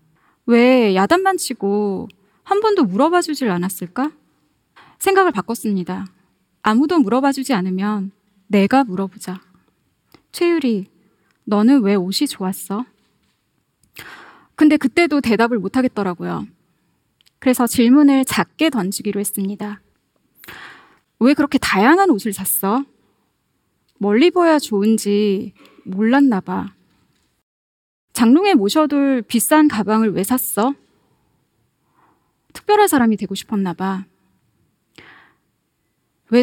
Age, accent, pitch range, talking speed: 20-39, Korean, 200-280 Hz, 80 wpm